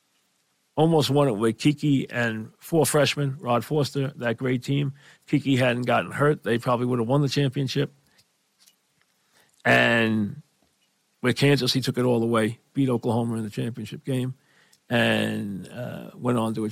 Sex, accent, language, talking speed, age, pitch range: male, American, English, 160 wpm, 50-69, 120-145 Hz